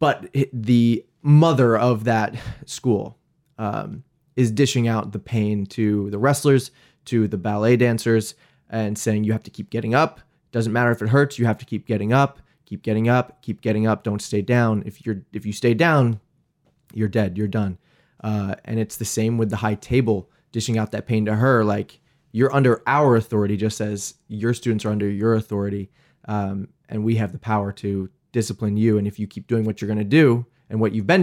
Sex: male